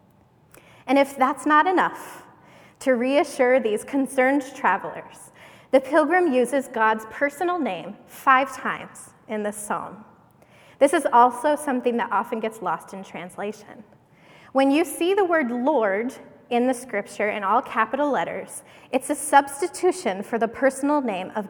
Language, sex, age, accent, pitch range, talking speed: English, female, 10-29, American, 225-290 Hz, 145 wpm